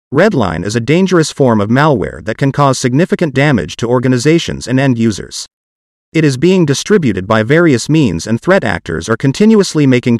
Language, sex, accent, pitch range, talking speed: English, male, American, 115-160 Hz, 170 wpm